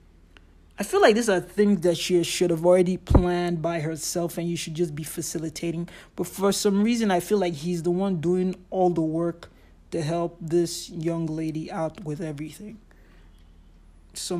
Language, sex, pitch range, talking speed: English, male, 135-185 Hz, 185 wpm